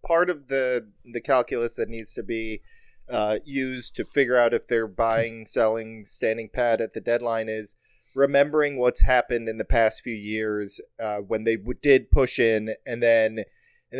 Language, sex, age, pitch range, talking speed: English, male, 30-49, 115-140 Hz, 180 wpm